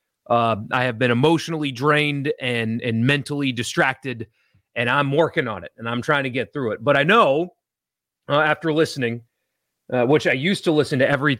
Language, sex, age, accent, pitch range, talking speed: English, male, 30-49, American, 120-160 Hz, 190 wpm